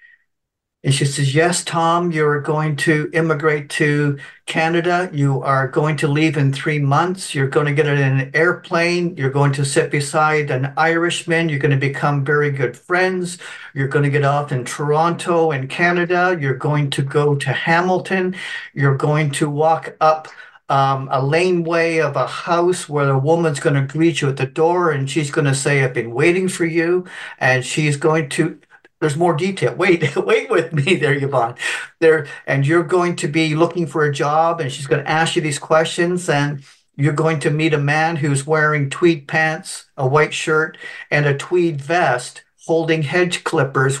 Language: English